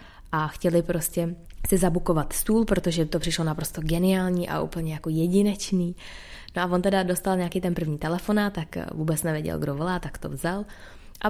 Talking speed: 175 wpm